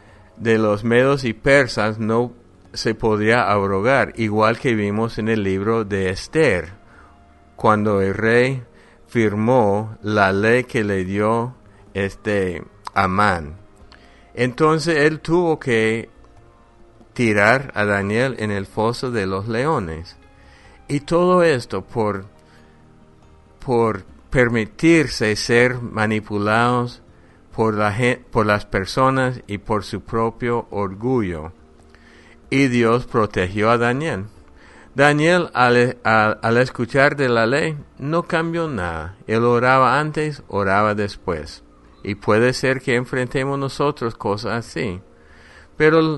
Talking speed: 115 wpm